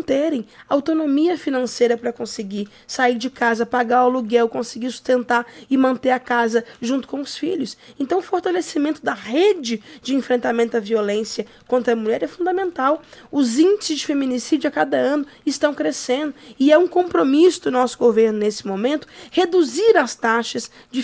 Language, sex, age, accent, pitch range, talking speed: Portuguese, female, 20-39, Brazilian, 230-285 Hz, 160 wpm